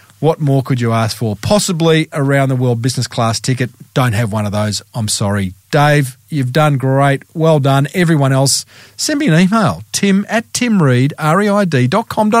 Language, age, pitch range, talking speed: English, 40-59, 130-180 Hz, 170 wpm